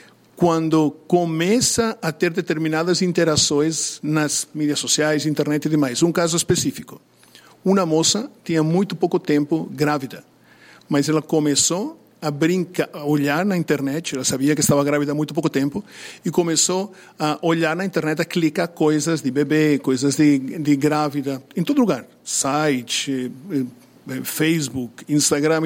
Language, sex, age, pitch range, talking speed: Portuguese, male, 50-69, 145-170 Hz, 145 wpm